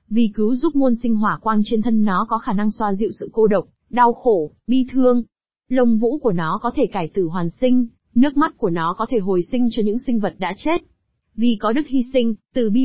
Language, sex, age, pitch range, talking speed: Vietnamese, female, 20-39, 205-255 Hz, 245 wpm